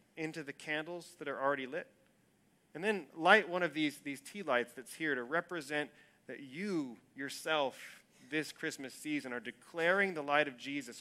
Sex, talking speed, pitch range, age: male, 175 wpm, 135-165 Hz, 30-49